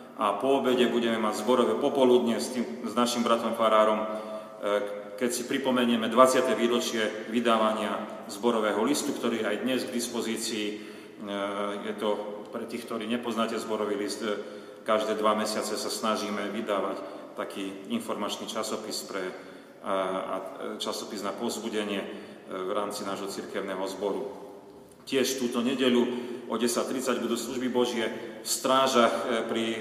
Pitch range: 105-120 Hz